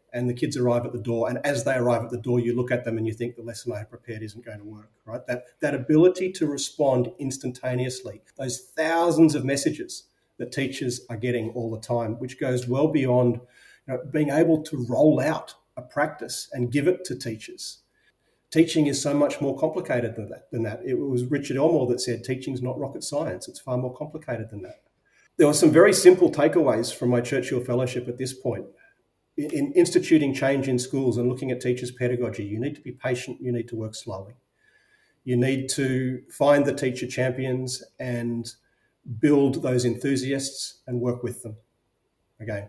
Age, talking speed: 40-59, 195 wpm